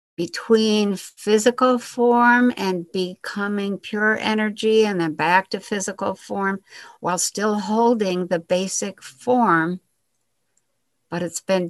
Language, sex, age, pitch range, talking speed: English, female, 60-79, 180-230 Hz, 115 wpm